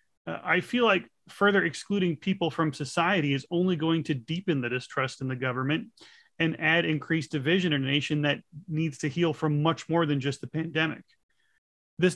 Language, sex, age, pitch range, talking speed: English, male, 30-49, 145-175 Hz, 185 wpm